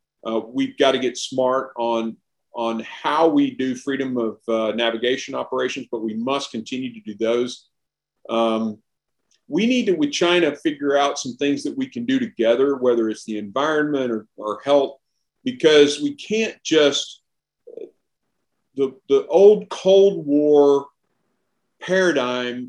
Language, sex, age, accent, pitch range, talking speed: English, male, 50-69, American, 120-145 Hz, 145 wpm